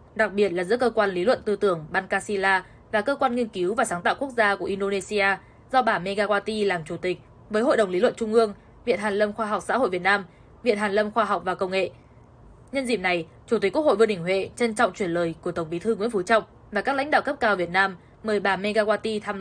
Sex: female